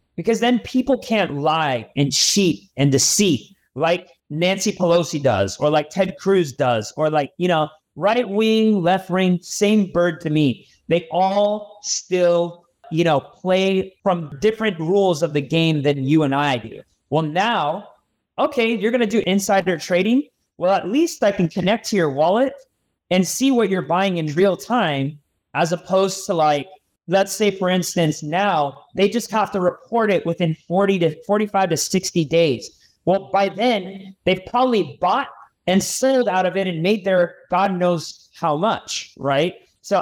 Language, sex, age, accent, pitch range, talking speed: English, male, 30-49, American, 160-205 Hz, 170 wpm